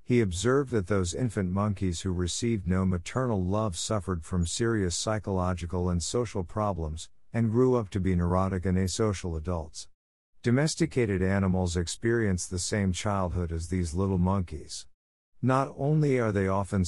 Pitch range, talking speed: 90-115 Hz, 150 wpm